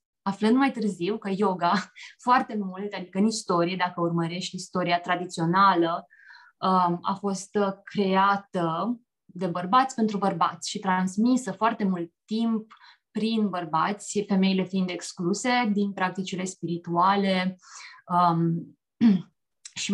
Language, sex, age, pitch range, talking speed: Romanian, female, 20-39, 180-220 Hz, 105 wpm